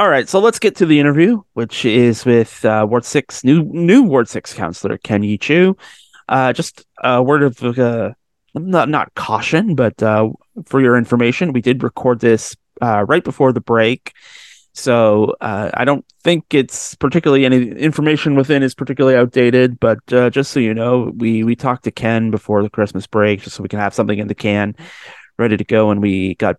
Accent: American